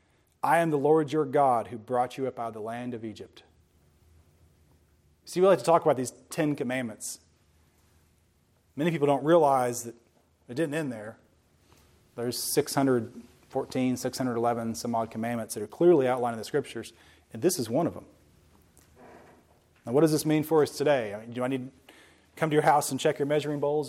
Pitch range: 110-155 Hz